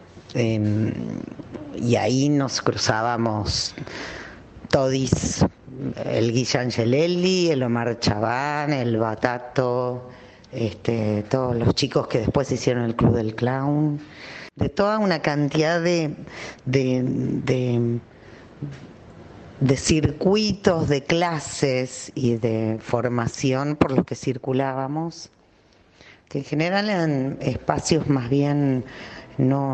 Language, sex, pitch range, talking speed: Spanish, female, 115-140 Hz, 105 wpm